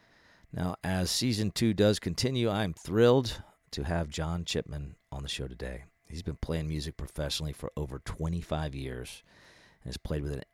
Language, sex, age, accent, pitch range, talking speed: English, male, 40-59, American, 70-90 Hz, 170 wpm